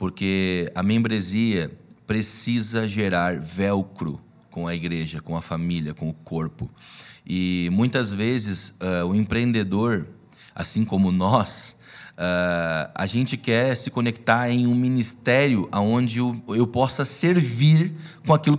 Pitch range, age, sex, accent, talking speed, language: 110-160 Hz, 20-39, male, Brazilian, 130 wpm, Portuguese